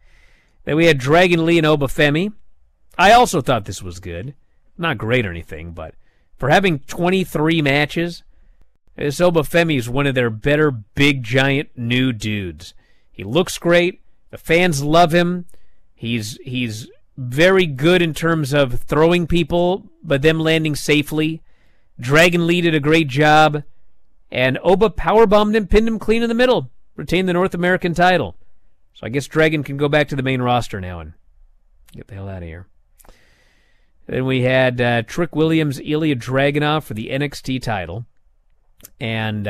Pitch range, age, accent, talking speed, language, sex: 120-160 Hz, 40-59, American, 165 wpm, English, male